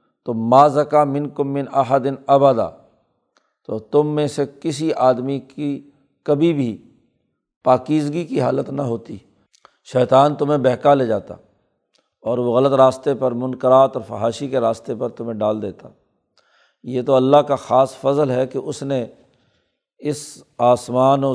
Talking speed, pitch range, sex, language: 145 wpm, 125-140 Hz, male, Urdu